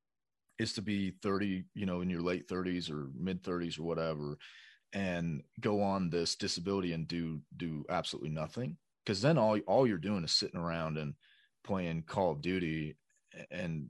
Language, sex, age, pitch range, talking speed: English, male, 30-49, 80-100 Hz, 175 wpm